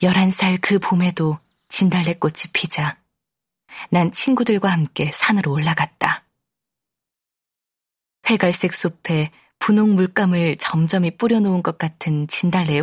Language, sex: Korean, female